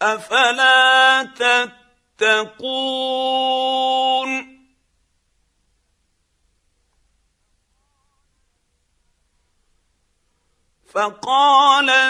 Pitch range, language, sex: 200-240 Hz, Arabic, male